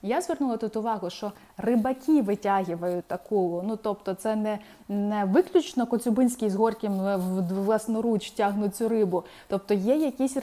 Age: 20-39